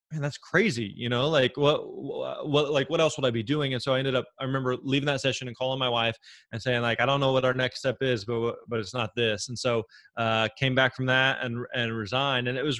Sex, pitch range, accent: male, 120-135 Hz, American